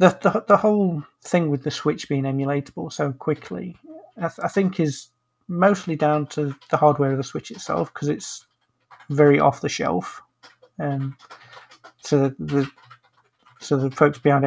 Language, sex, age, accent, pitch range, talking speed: English, male, 40-59, British, 135-170 Hz, 170 wpm